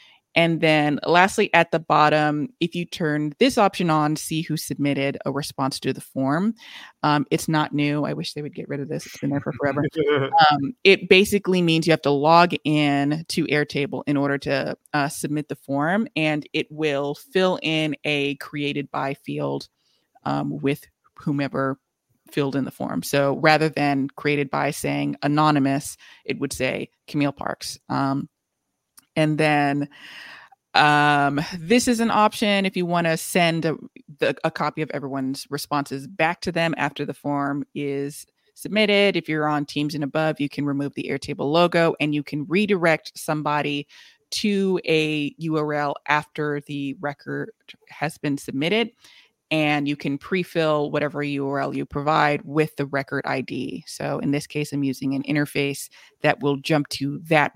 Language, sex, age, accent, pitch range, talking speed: English, female, 20-39, American, 140-160 Hz, 170 wpm